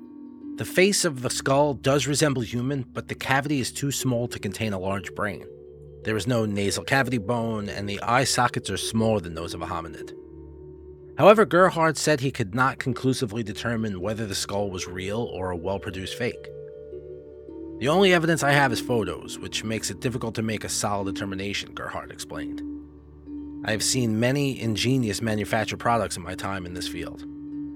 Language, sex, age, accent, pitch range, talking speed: English, male, 30-49, American, 90-130 Hz, 180 wpm